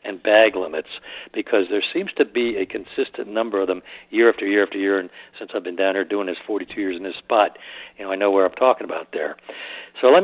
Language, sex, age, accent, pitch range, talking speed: English, male, 60-79, American, 100-125 Hz, 245 wpm